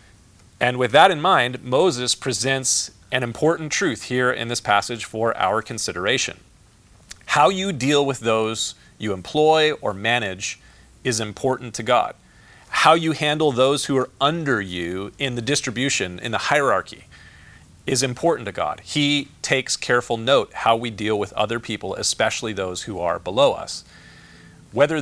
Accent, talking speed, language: American, 155 wpm, English